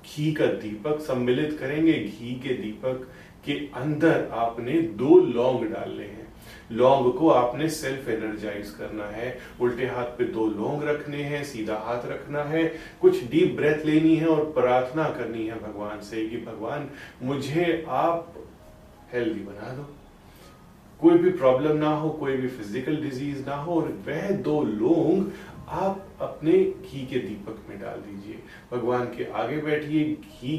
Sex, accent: male, native